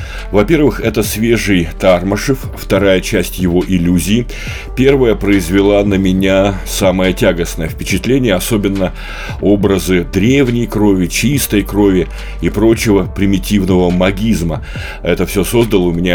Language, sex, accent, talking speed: Russian, male, native, 110 wpm